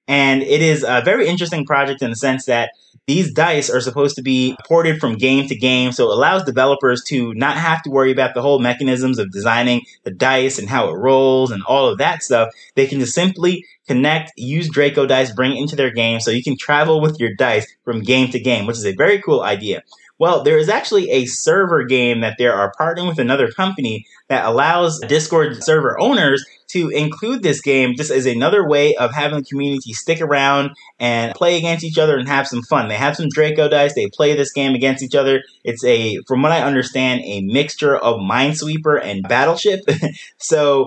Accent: American